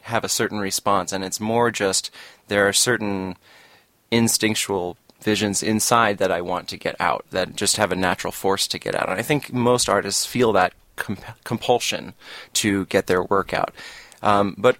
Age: 30-49